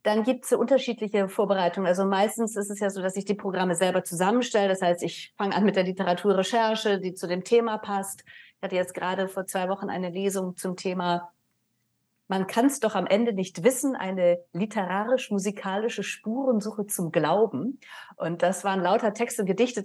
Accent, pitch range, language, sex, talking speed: German, 185-230 Hz, German, female, 185 wpm